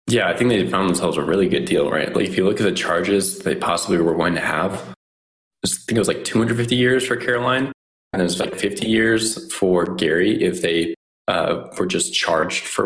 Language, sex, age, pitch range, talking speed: English, male, 20-39, 90-110 Hz, 225 wpm